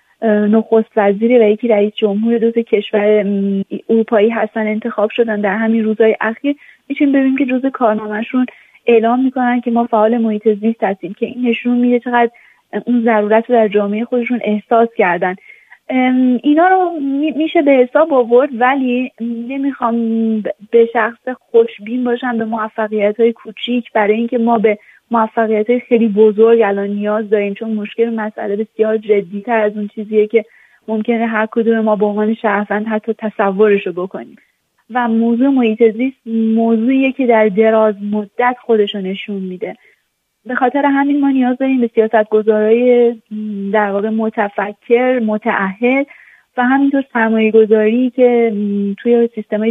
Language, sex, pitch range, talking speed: Persian, female, 215-240 Hz, 145 wpm